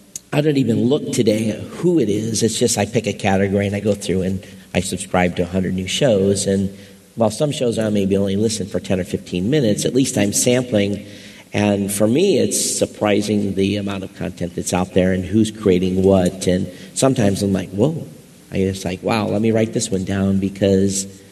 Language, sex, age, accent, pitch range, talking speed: English, male, 50-69, American, 95-115 Hz, 210 wpm